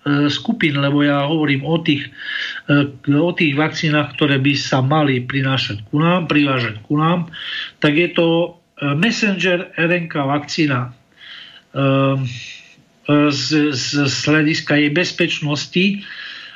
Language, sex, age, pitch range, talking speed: Slovak, male, 50-69, 135-170 Hz, 110 wpm